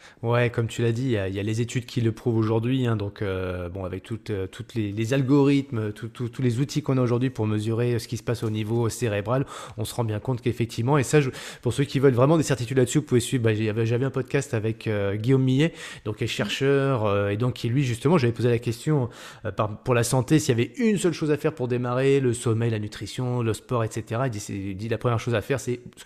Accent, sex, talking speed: French, male, 260 wpm